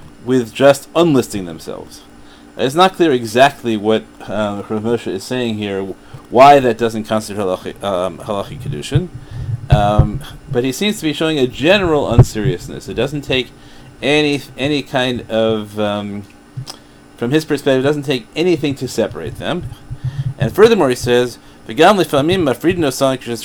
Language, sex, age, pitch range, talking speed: English, male, 40-59, 110-140 Hz, 135 wpm